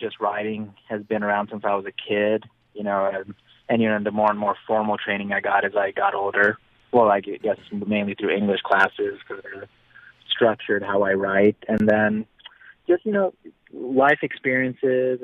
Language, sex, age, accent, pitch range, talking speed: English, male, 20-39, American, 100-110 Hz, 190 wpm